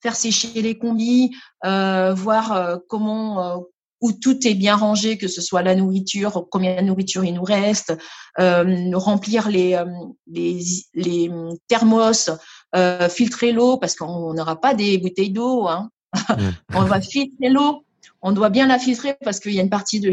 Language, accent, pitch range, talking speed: French, French, 180-220 Hz, 170 wpm